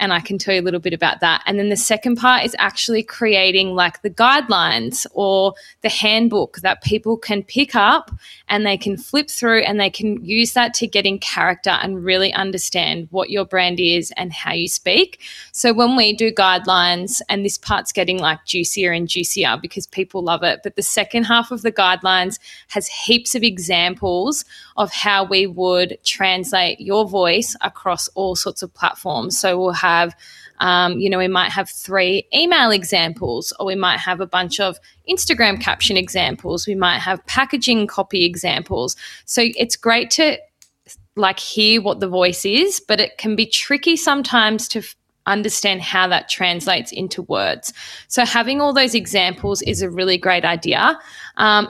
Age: 20-39